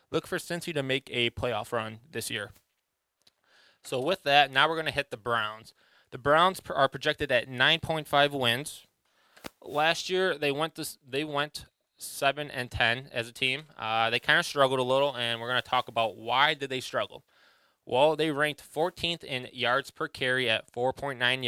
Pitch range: 120-145 Hz